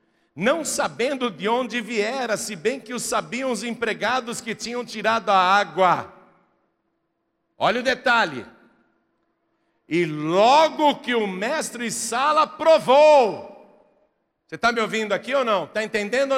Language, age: Portuguese, 60-79